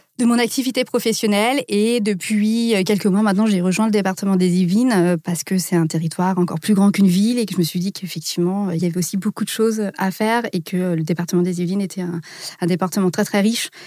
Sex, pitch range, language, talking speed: female, 180-215 Hz, French, 235 wpm